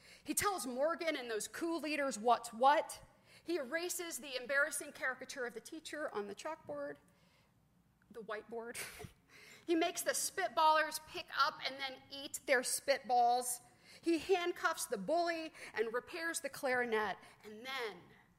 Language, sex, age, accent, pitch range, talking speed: English, female, 40-59, American, 235-295 Hz, 140 wpm